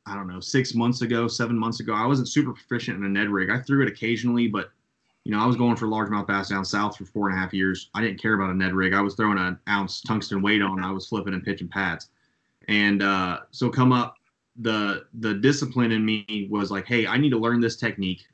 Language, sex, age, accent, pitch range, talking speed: English, male, 20-39, American, 100-115 Hz, 255 wpm